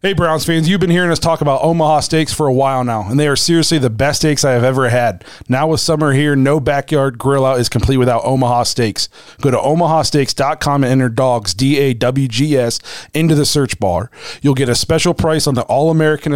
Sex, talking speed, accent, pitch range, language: male, 230 wpm, American, 130-155 Hz, English